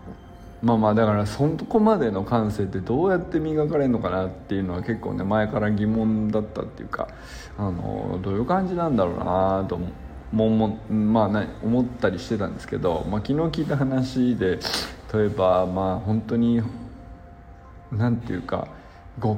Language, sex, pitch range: Japanese, male, 100-125 Hz